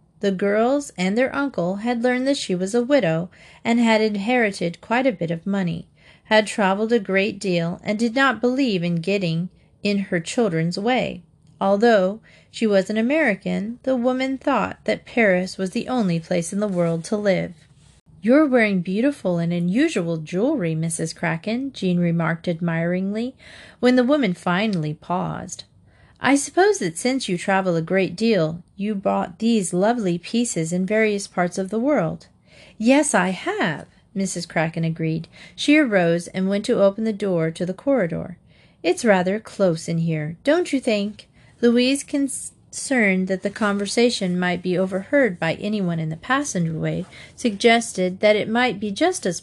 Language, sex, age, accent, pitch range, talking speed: English, female, 40-59, American, 175-235 Hz, 165 wpm